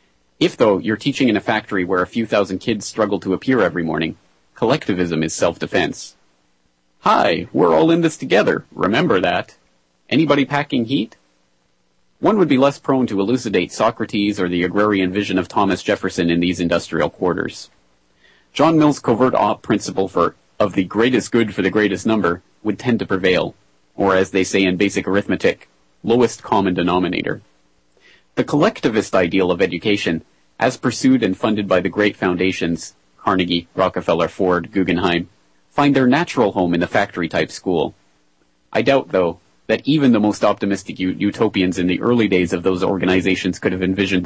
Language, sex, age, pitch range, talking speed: English, male, 40-59, 85-105 Hz, 165 wpm